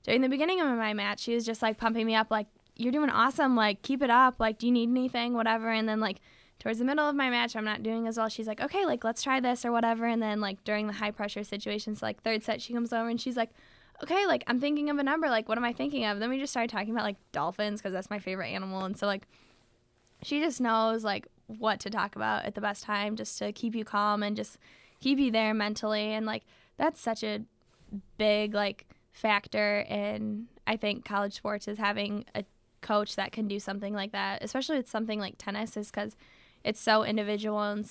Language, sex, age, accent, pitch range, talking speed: English, female, 10-29, American, 205-235 Hz, 245 wpm